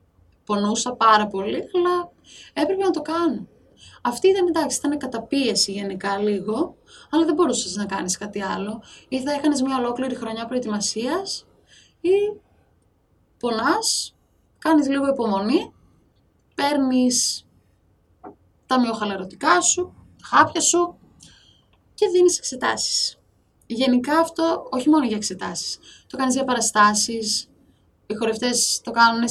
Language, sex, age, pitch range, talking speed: Greek, female, 20-39, 215-270 Hz, 120 wpm